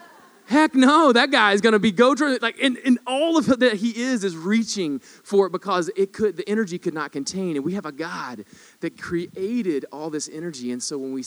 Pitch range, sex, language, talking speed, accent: 125-170 Hz, male, English, 230 wpm, American